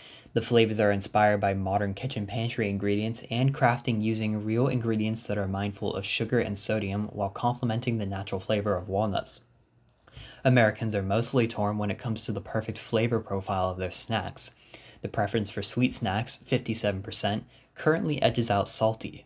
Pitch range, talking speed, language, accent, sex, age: 105-125 Hz, 165 wpm, English, American, male, 10-29